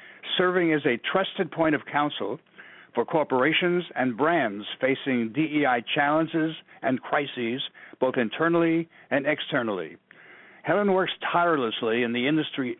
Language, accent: English, American